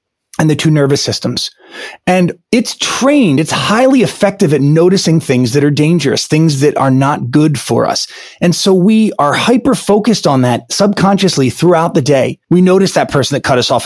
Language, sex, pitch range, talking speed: English, male, 140-195 Hz, 185 wpm